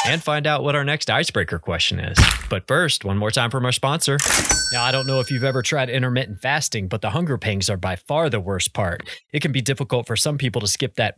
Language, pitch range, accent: English, 105-140 Hz, American